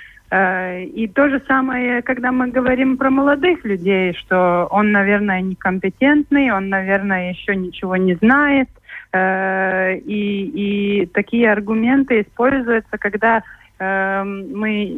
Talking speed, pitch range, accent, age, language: 110 wpm, 185-235 Hz, native, 30-49, Russian